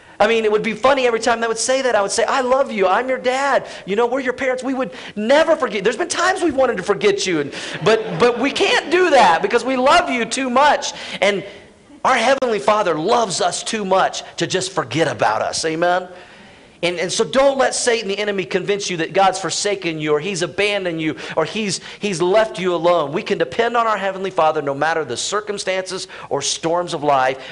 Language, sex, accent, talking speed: English, male, American, 225 wpm